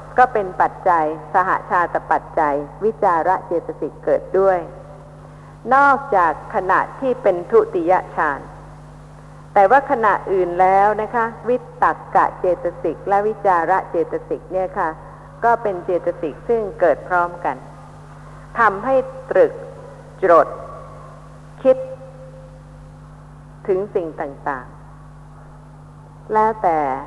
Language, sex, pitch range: Thai, female, 145-220 Hz